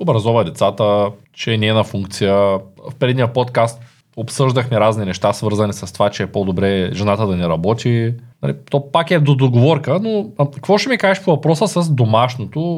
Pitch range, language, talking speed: 120-165 Hz, Bulgarian, 175 wpm